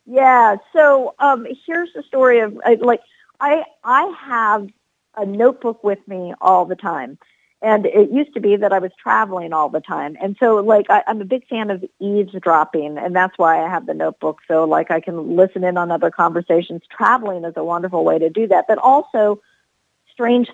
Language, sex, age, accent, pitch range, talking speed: English, female, 50-69, American, 175-220 Hz, 200 wpm